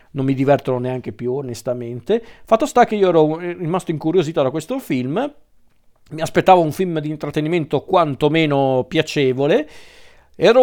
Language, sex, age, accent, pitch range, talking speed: Italian, male, 40-59, native, 130-170 Hz, 140 wpm